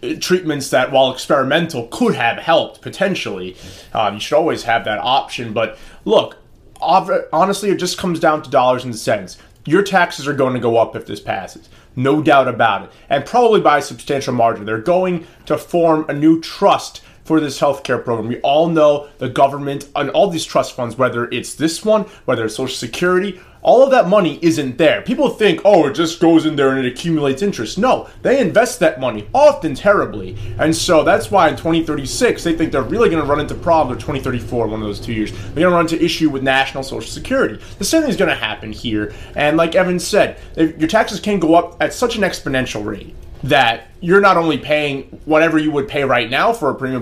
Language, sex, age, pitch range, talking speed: English, male, 30-49, 130-175 Hz, 215 wpm